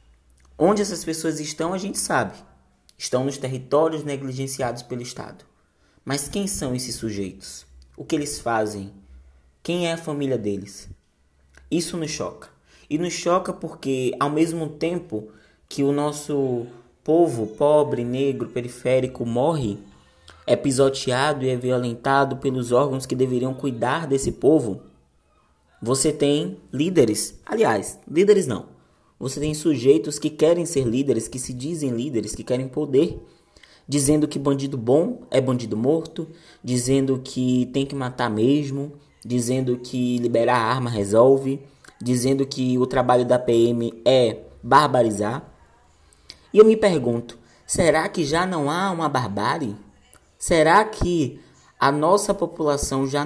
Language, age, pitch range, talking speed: Portuguese, 20-39, 120-150 Hz, 135 wpm